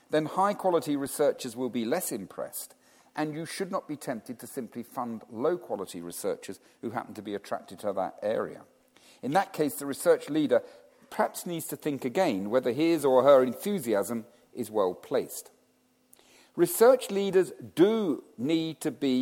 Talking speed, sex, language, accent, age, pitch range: 155 wpm, male, English, British, 50-69, 120-175 Hz